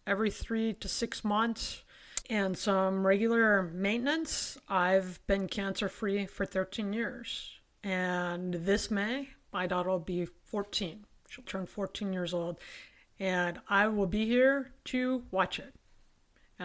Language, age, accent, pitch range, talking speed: English, 30-49, American, 195-265 Hz, 135 wpm